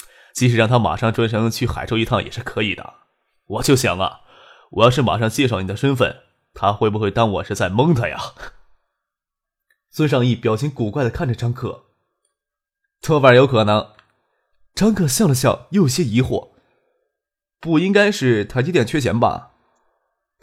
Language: Chinese